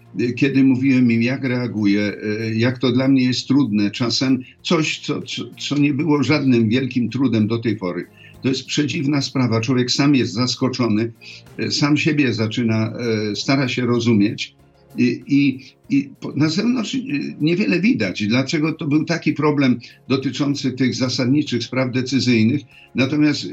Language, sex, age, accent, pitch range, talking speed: Polish, male, 50-69, native, 125-150 Hz, 145 wpm